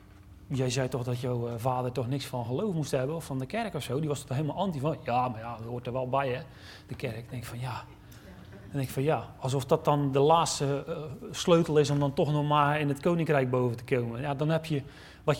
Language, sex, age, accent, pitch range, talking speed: Dutch, male, 30-49, Dutch, 125-185 Hz, 260 wpm